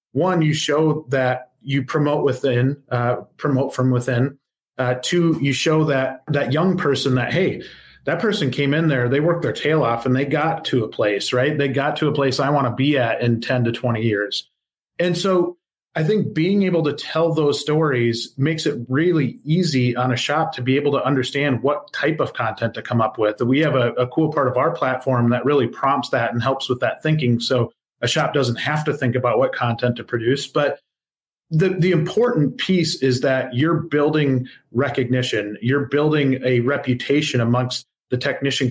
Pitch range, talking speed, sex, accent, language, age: 125-155 Hz, 200 wpm, male, American, English, 30-49